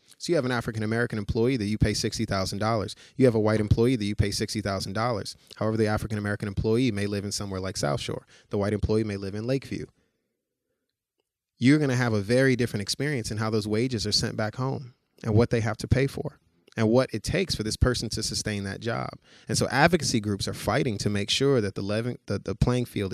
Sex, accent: male, American